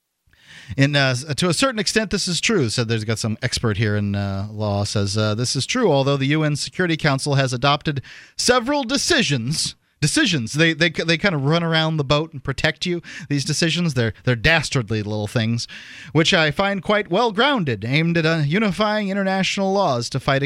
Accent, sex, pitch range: American, male, 115-155 Hz